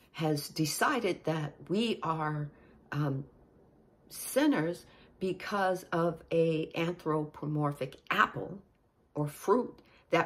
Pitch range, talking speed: 155-220 Hz, 90 wpm